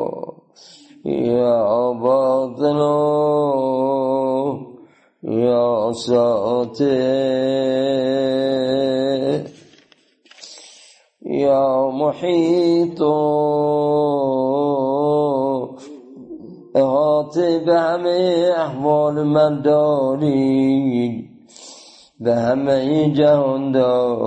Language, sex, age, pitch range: Persian, male, 40-59, 130-150 Hz